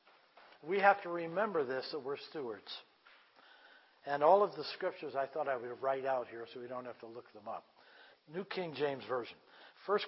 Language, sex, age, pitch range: English, male, 60-79, 140-195 Hz